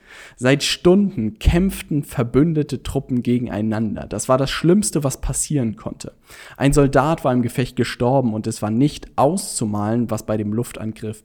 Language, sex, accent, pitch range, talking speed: German, male, German, 110-145 Hz, 150 wpm